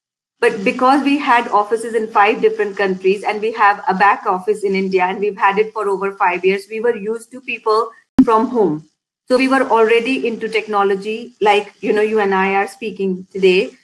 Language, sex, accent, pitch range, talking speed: English, female, Indian, 205-230 Hz, 205 wpm